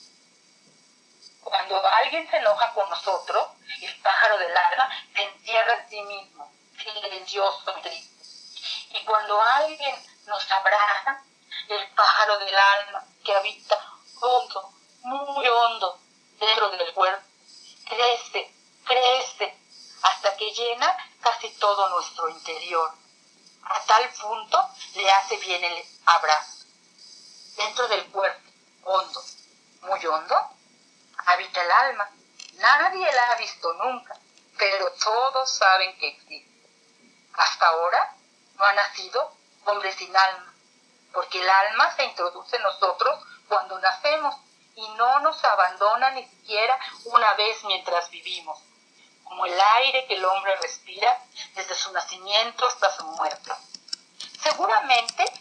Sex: female